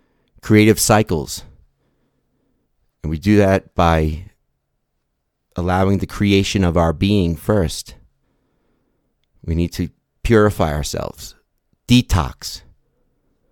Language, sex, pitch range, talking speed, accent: English, male, 80-100 Hz, 90 wpm, American